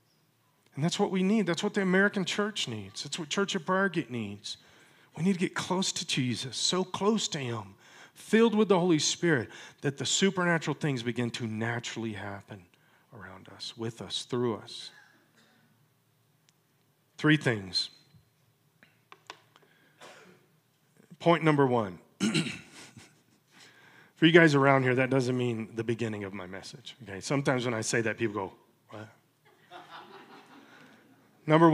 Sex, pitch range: male, 125-175 Hz